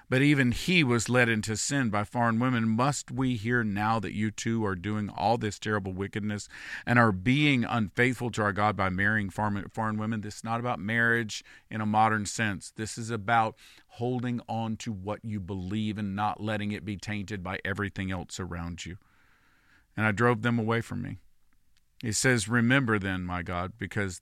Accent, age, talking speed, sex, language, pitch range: American, 50-69, 190 wpm, male, English, 95-120 Hz